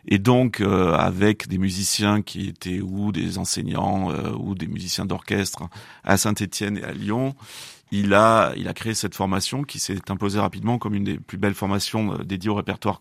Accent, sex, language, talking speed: French, male, French, 190 wpm